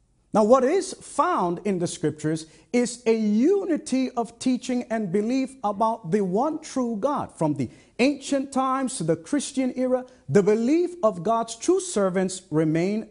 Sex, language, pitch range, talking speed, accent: male, English, 180-255 Hz, 155 wpm, American